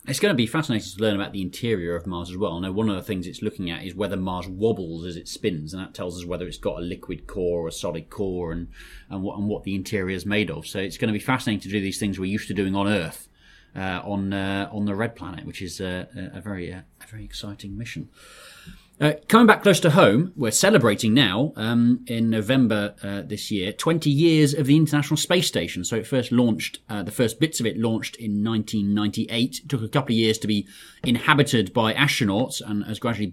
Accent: British